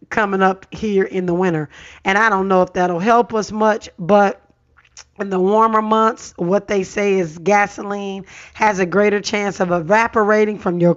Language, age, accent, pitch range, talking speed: English, 40-59, American, 180-205 Hz, 180 wpm